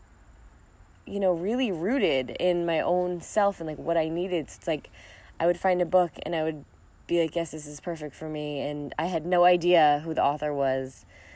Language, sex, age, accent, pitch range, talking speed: English, female, 20-39, American, 110-175 Hz, 215 wpm